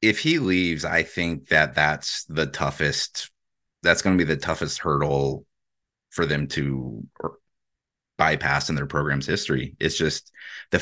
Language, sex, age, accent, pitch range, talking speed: English, male, 30-49, American, 70-85 Hz, 150 wpm